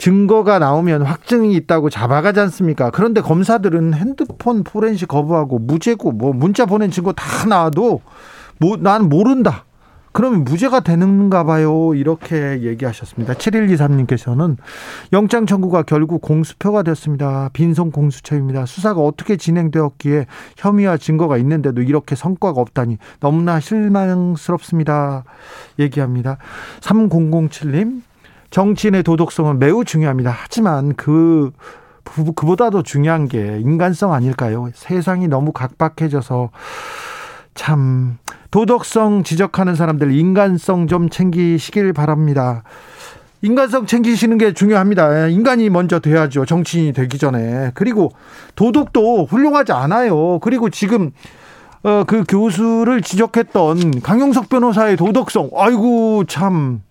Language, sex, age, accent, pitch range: Korean, male, 40-59, native, 145-210 Hz